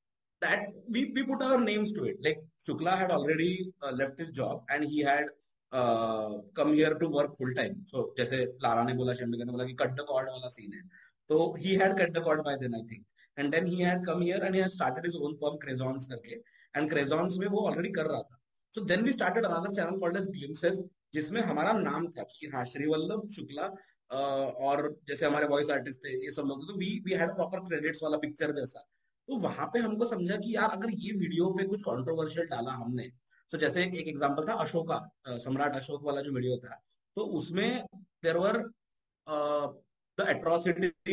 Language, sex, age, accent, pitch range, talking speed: Hindi, male, 30-49, native, 145-195 Hz, 165 wpm